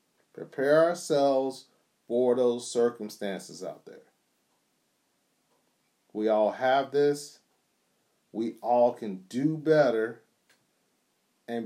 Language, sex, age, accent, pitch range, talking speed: English, male, 40-59, American, 110-135 Hz, 85 wpm